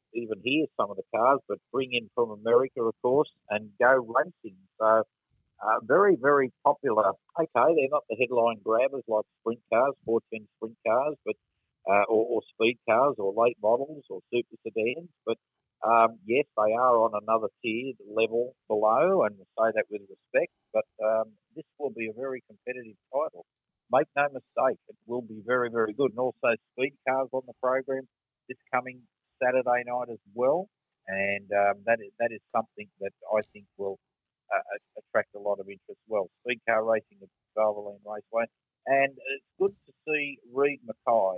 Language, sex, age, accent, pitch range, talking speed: English, male, 50-69, Australian, 110-125 Hz, 180 wpm